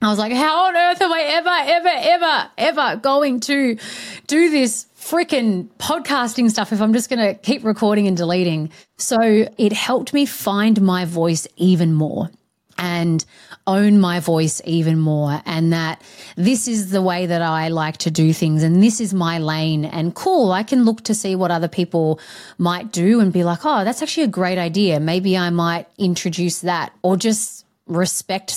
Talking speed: 185 wpm